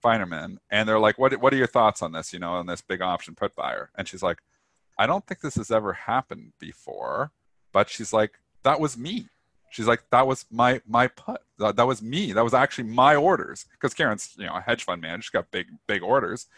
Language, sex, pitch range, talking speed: English, male, 110-150 Hz, 230 wpm